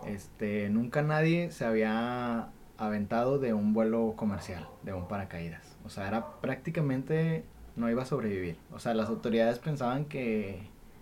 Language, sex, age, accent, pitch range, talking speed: Spanish, male, 20-39, Mexican, 105-130 Hz, 145 wpm